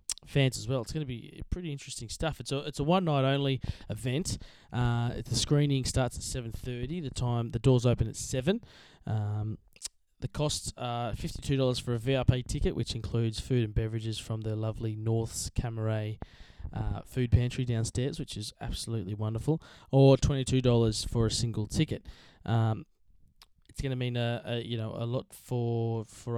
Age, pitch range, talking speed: 20-39, 110-125 Hz, 170 wpm